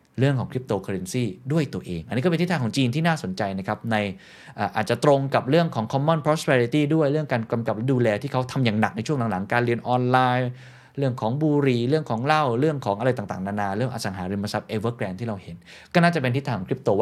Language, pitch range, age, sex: Thai, 105-145 Hz, 20-39, male